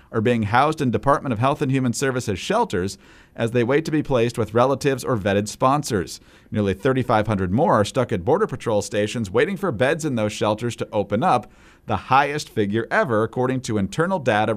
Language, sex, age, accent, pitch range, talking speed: English, male, 40-59, American, 105-135 Hz, 200 wpm